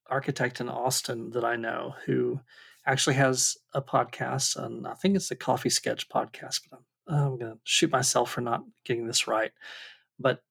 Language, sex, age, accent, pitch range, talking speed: English, male, 40-59, American, 125-155 Hz, 185 wpm